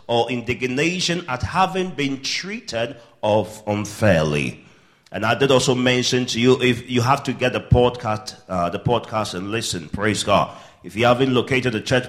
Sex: male